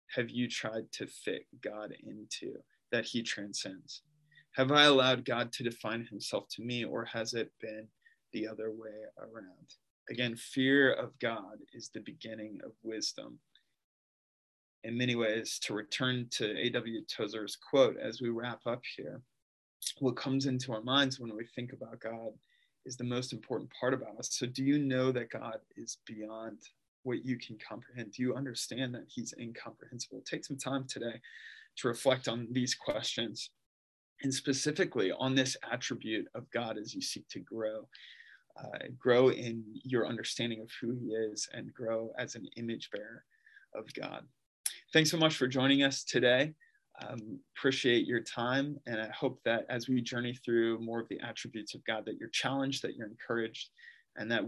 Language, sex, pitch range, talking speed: English, male, 115-130 Hz, 170 wpm